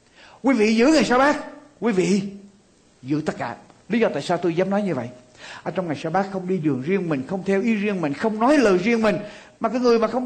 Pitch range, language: 215-285 Hz, Vietnamese